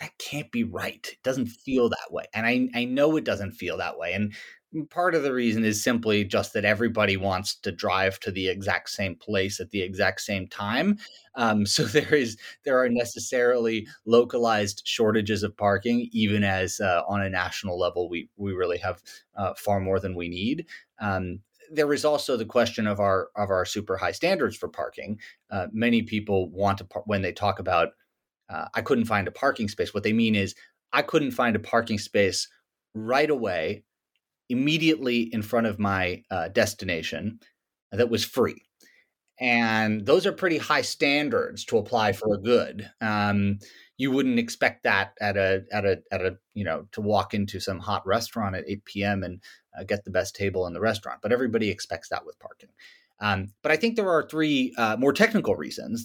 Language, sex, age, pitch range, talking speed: English, male, 30-49, 100-125 Hz, 195 wpm